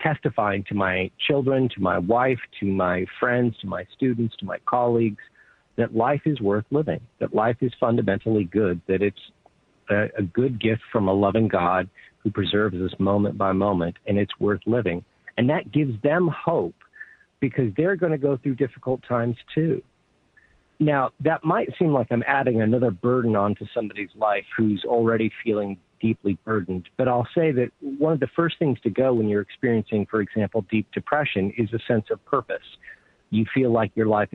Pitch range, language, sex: 105-135 Hz, English, male